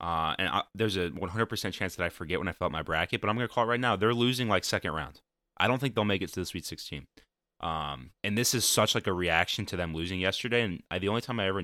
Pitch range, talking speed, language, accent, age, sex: 80-105 Hz, 300 wpm, English, American, 20-39, male